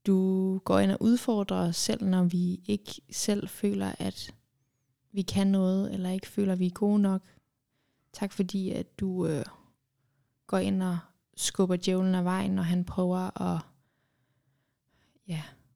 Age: 20-39